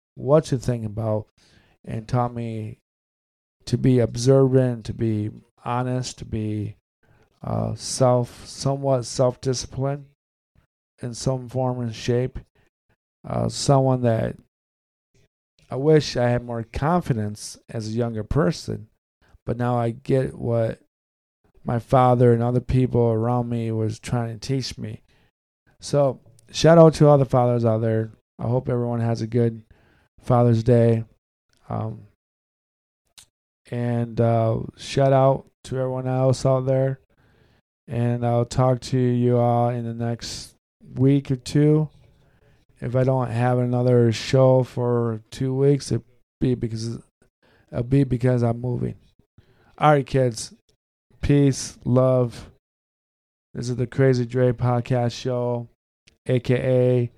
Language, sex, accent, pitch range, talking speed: English, male, American, 115-130 Hz, 130 wpm